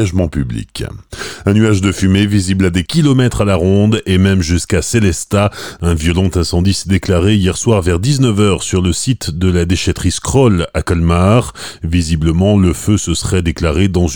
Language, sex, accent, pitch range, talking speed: French, male, French, 85-110 Hz, 175 wpm